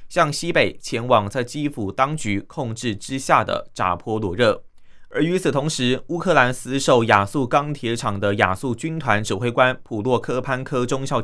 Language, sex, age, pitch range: Chinese, male, 20-39, 110-145 Hz